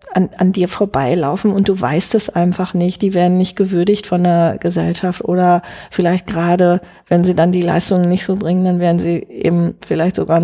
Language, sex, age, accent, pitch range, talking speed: German, female, 40-59, German, 170-205 Hz, 195 wpm